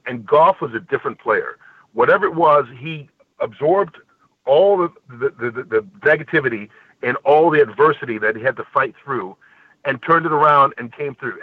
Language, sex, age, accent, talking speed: English, male, 50-69, American, 180 wpm